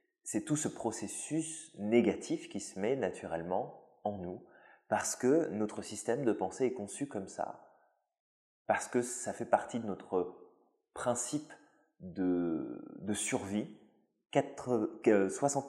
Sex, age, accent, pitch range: male, 20-39, French, 100-135 Hz